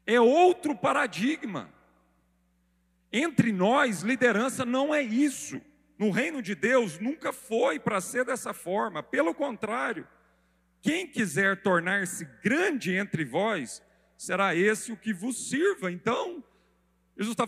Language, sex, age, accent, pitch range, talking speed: Portuguese, male, 40-59, Brazilian, 145-230 Hz, 125 wpm